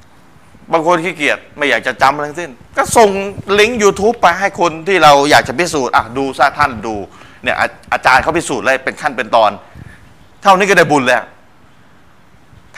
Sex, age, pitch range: male, 30-49, 130-180 Hz